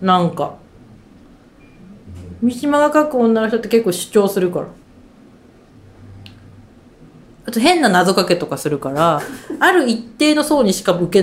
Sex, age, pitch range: female, 40-59, 165-245 Hz